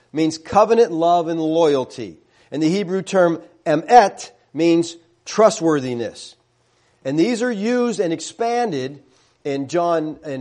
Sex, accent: male, American